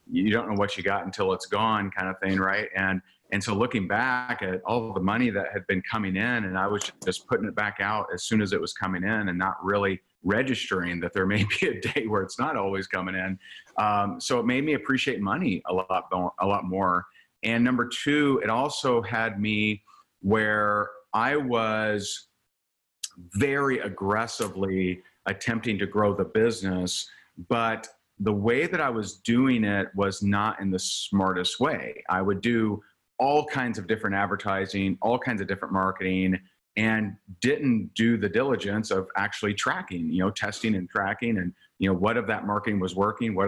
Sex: male